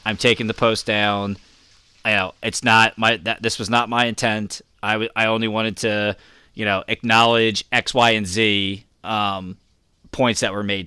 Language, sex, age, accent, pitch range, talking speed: English, male, 20-39, American, 110-135 Hz, 190 wpm